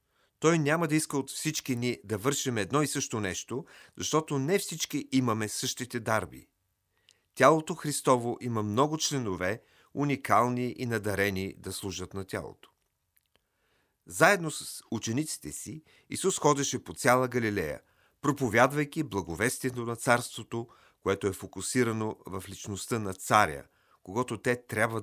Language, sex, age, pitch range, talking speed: Bulgarian, male, 40-59, 105-150 Hz, 130 wpm